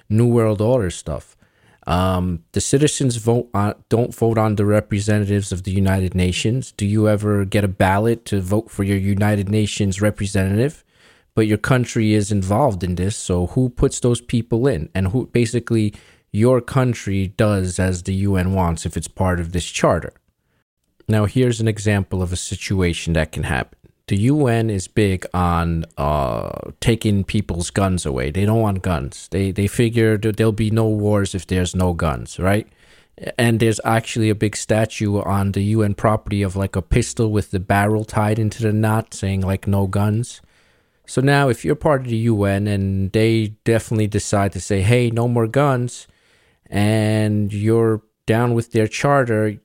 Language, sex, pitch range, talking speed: English, male, 95-115 Hz, 175 wpm